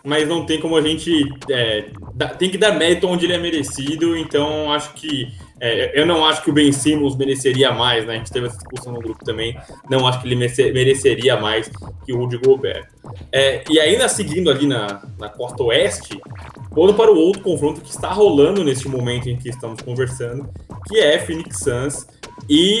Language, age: Portuguese, 10-29